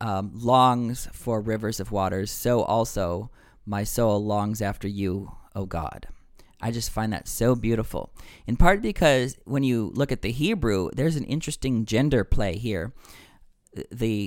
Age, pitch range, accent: 40-59, 100-125 Hz, American